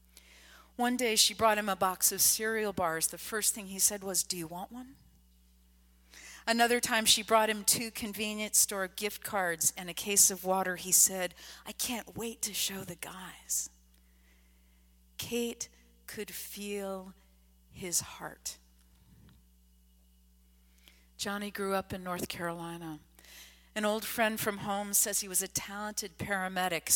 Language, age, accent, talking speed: English, 40-59, American, 145 wpm